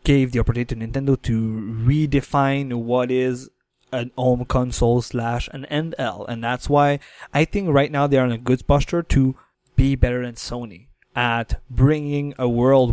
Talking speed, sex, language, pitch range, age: 170 wpm, male, English, 120-150 Hz, 20-39